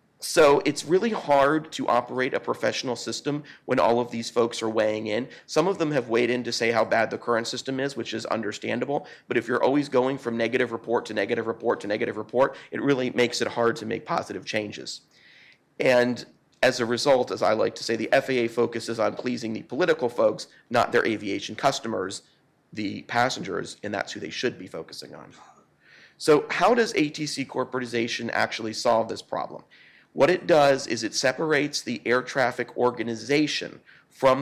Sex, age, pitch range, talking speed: male, 40-59, 115-135 Hz, 190 wpm